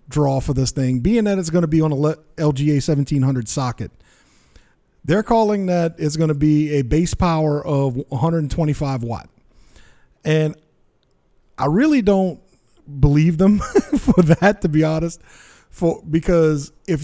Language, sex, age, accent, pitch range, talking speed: English, male, 40-59, American, 140-175 Hz, 150 wpm